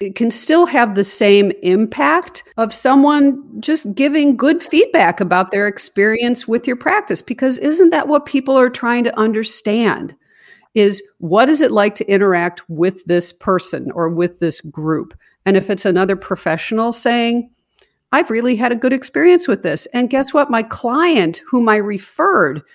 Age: 50-69